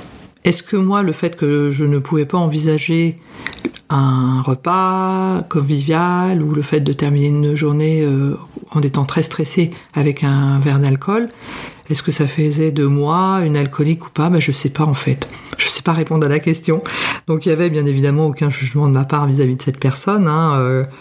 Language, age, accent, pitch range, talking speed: French, 50-69, French, 145-175 Hz, 205 wpm